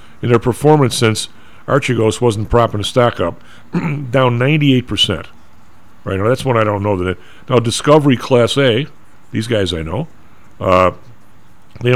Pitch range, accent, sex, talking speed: 105-145 Hz, American, male, 160 wpm